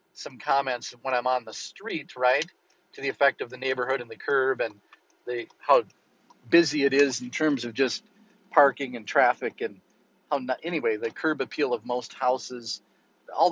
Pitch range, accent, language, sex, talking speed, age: 130-175 Hz, American, English, male, 180 wpm, 40-59